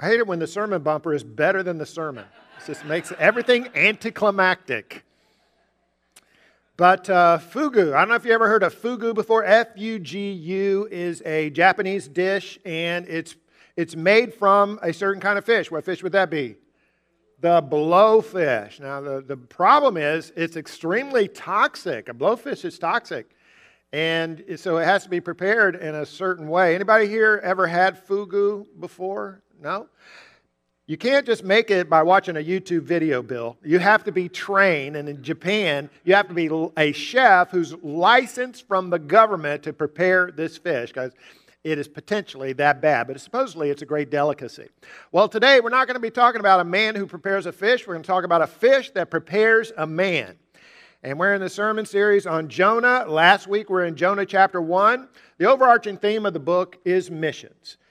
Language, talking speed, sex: English, 185 wpm, male